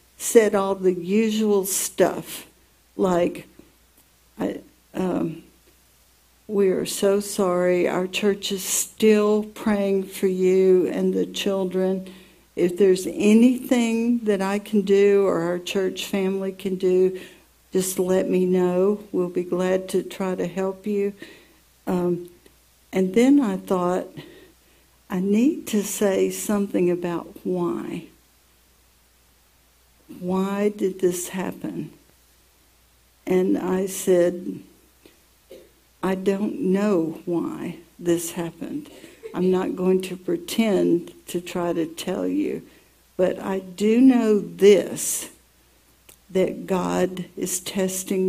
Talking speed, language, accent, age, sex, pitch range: 110 wpm, English, American, 60-79, female, 175-200 Hz